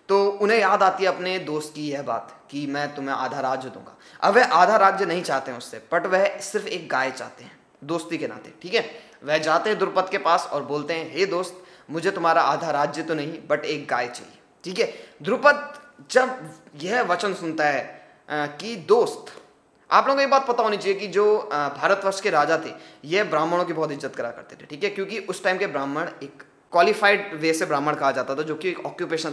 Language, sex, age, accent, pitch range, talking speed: Hindi, male, 20-39, native, 150-195 Hz, 215 wpm